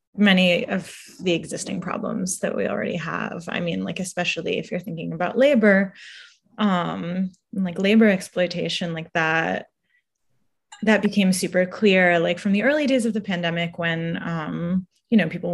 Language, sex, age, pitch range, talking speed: English, female, 20-39, 175-215 Hz, 160 wpm